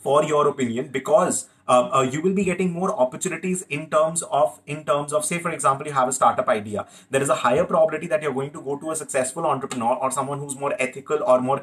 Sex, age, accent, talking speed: male, 30-49, Indian, 245 wpm